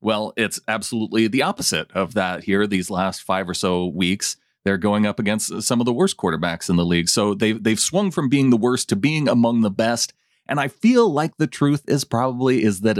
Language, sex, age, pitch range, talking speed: English, male, 30-49, 100-120 Hz, 225 wpm